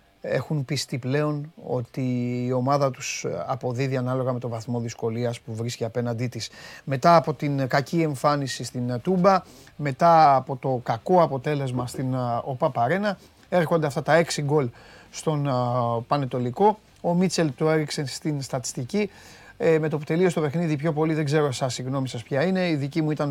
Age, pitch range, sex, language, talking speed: 30-49, 125-160 Hz, male, Greek, 160 wpm